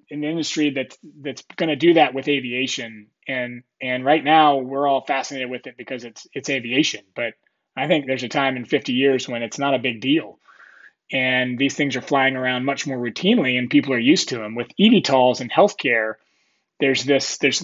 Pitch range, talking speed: 130-155 Hz, 205 wpm